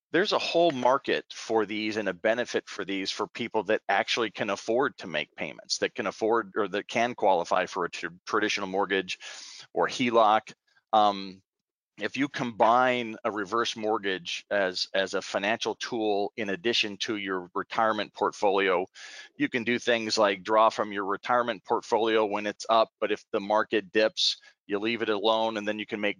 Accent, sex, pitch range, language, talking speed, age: American, male, 100-120 Hz, English, 180 wpm, 40-59